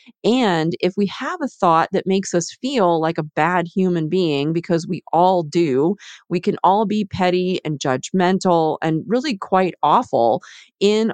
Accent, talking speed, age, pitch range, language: American, 165 wpm, 30-49, 155-190 Hz, English